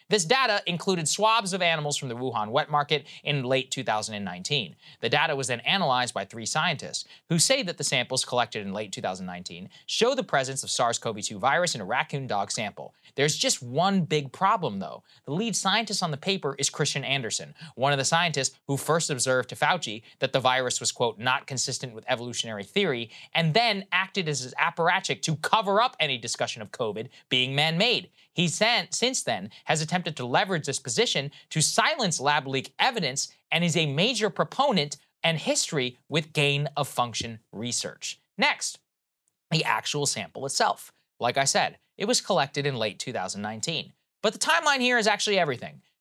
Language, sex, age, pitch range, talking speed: English, male, 20-39, 130-180 Hz, 180 wpm